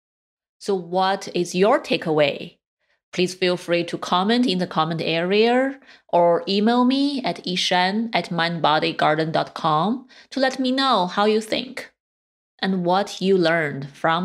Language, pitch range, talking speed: English, 175-235 Hz, 140 wpm